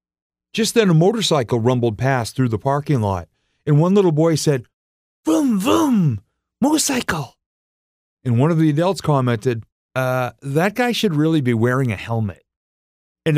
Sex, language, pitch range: male, English, 125-190 Hz